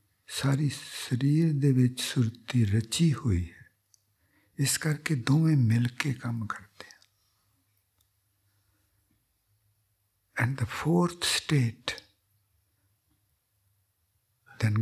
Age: 60-79